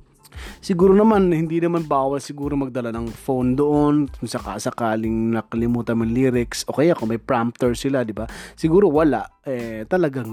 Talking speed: 145 wpm